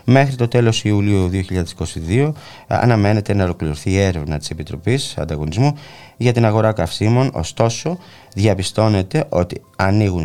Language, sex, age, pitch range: Greek, male, 20-39, 85-115 Hz